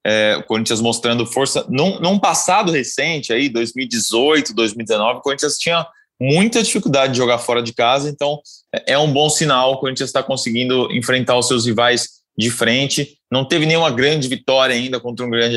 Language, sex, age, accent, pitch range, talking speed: Portuguese, male, 20-39, Brazilian, 115-140 Hz, 175 wpm